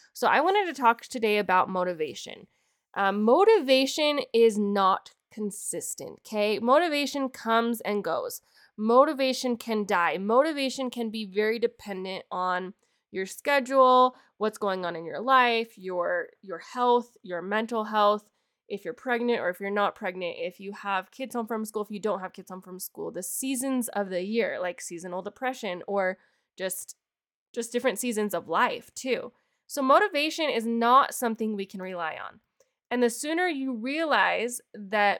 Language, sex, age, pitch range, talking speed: English, female, 20-39, 195-245 Hz, 160 wpm